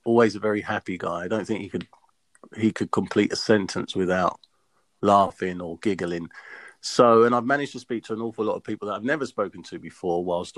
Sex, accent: male, British